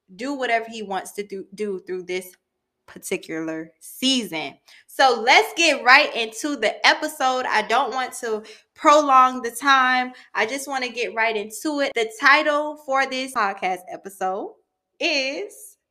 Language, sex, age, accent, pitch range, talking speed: English, female, 20-39, American, 250-345 Hz, 150 wpm